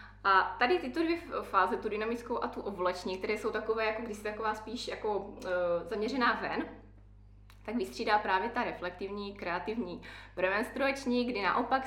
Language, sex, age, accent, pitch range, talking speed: Czech, female, 20-39, native, 180-235 Hz, 155 wpm